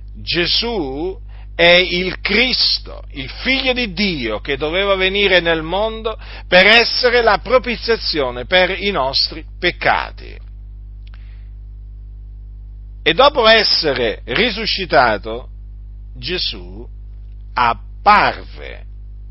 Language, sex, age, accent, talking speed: Italian, male, 50-69, native, 85 wpm